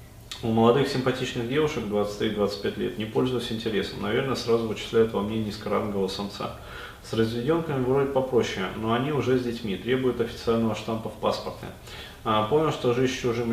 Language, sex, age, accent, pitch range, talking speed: Russian, male, 20-39, native, 100-120 Hz, 155 wpm